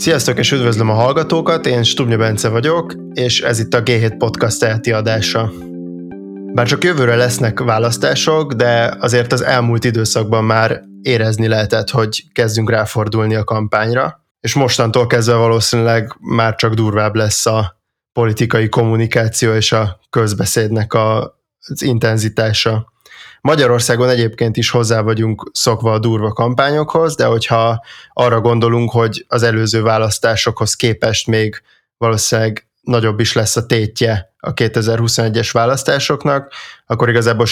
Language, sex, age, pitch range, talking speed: Hungarian, male, 20-39, 110-120 Hz, 130 wpm